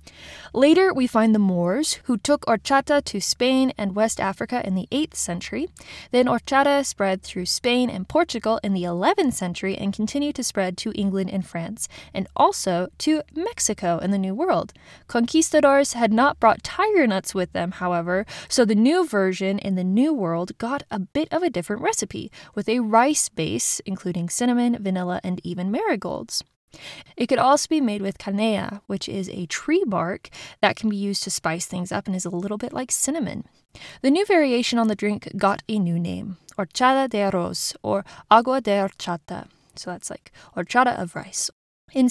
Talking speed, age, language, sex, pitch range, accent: 185 wpm, 20-39, English, female, 190-265 Hz, American